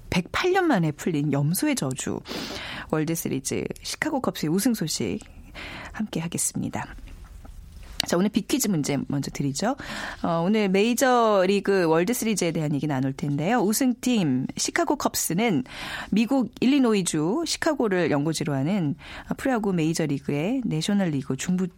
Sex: female